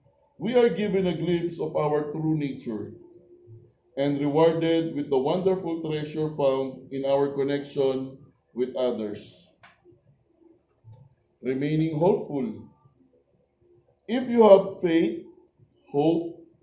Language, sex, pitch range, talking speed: Filipino, male, 140-180 Hz, 100 wpm